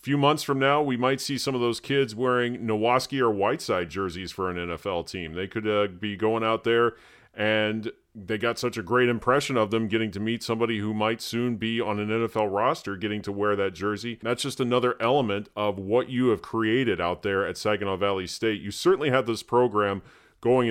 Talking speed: 215 wpm